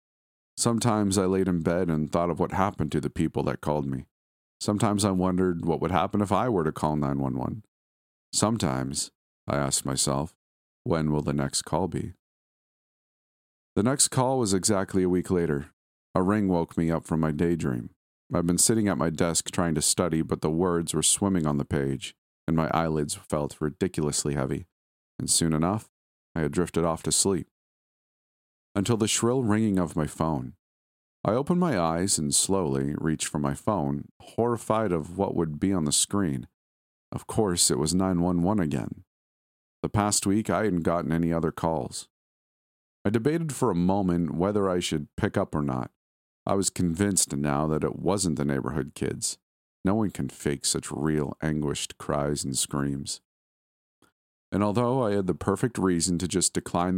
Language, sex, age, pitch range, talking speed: English, male, 40-59, 70-95 Hz, 175 wpm